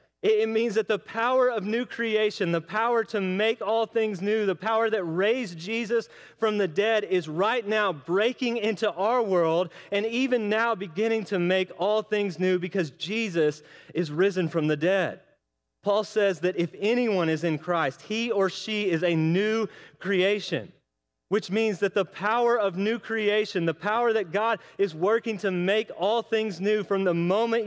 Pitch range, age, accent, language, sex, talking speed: 180-220 Hz, 30-49, American, English, male, 180 wpm